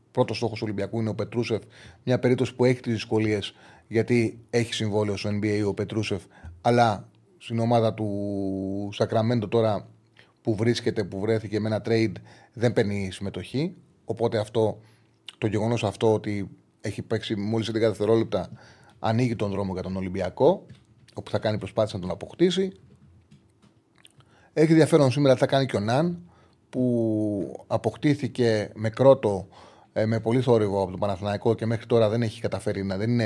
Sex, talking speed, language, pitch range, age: male, 160 wpm, Greek, 105-120 Hz, 30-49